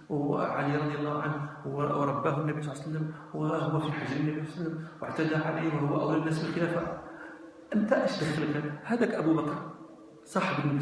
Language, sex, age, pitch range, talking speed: Arabic, male, 40-59, 160-265 Hz, 185 wpm